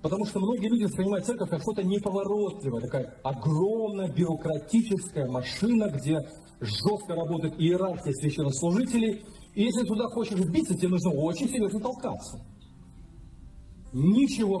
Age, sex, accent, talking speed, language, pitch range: 40-59, male, native, 120 wpm, Russian, 135-200 Hz